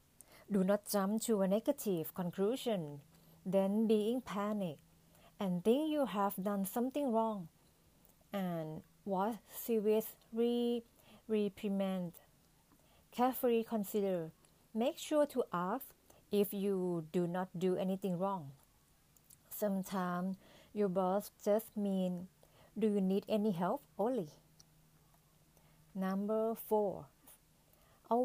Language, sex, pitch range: Thai, female, 185-220 Hz